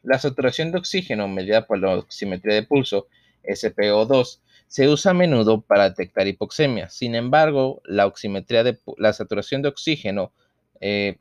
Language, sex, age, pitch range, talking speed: Spanish, male, 30-49, 100-130 Hz, 140 wpm